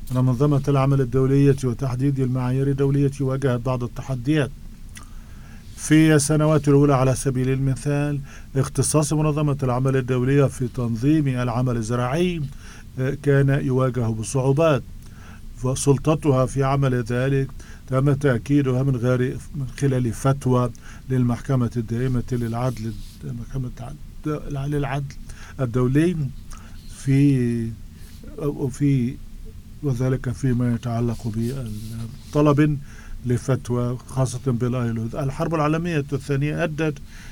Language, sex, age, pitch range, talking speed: English, male, 50-69, 120-140 Hz, 85 wpm